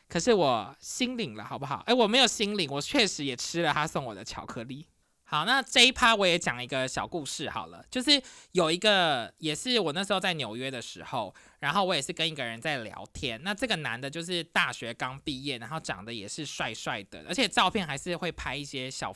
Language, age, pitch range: Chinese, 20-39, 150-235 Hz